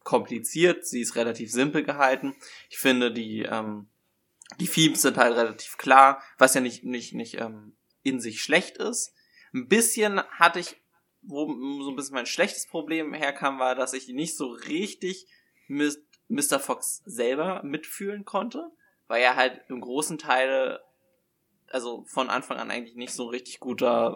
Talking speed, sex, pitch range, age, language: 165 wpm, male, 120-160 Hz, 20-39, German